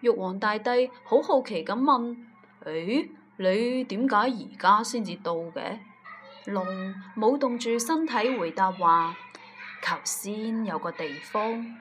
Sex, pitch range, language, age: female, 190-250 Hz, Chinese, 20-39